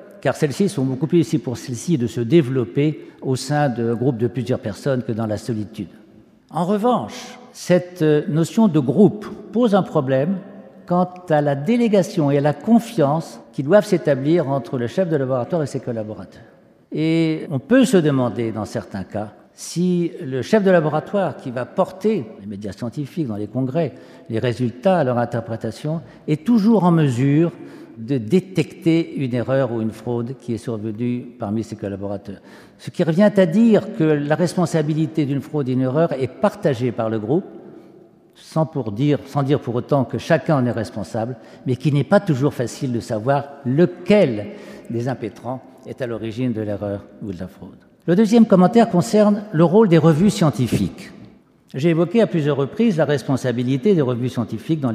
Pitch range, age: 120-175 Hz, 60-79